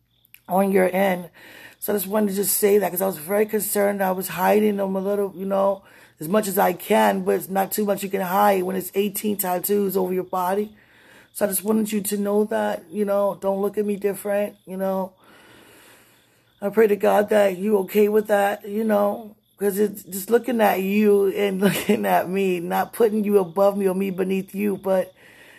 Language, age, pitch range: English, 20-39, 190-215 Hz